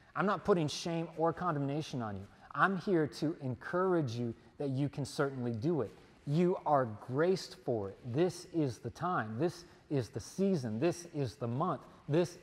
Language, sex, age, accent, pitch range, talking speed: English, male, 30-49, American, 120-165 Hz, 180 wpm